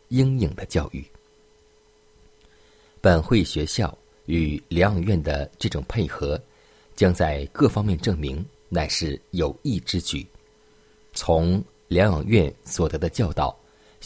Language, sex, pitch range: Chinese, male, 80-105 Hz